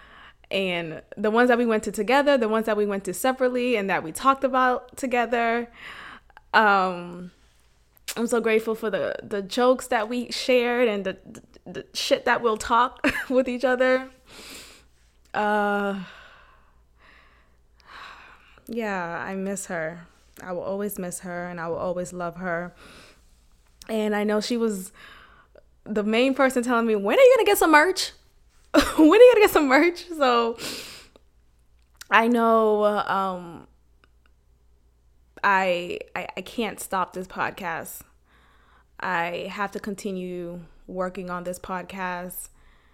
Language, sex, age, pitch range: English, female, 20-39, 170-235 Hz